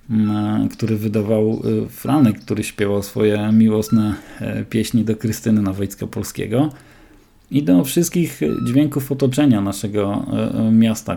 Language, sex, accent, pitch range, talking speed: Polish, male, native, 110-130 Hz, 105 wpm